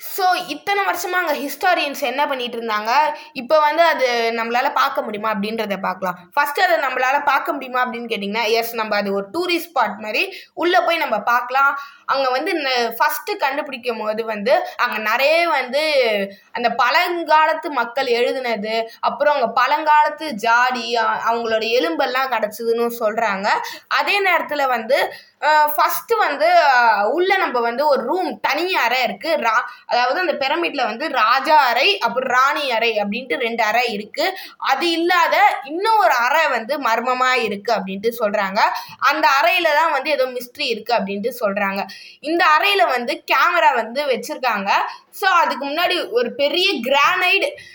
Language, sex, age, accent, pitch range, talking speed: Tamil, female, 20-39, native, 230-320 Hz, 140 wpm